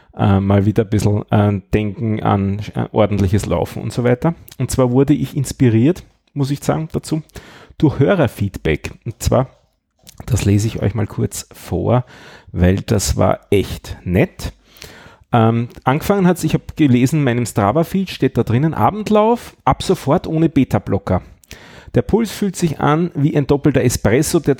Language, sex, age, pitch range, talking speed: German, male, 30-49, 105-150 Hz, 160 wpm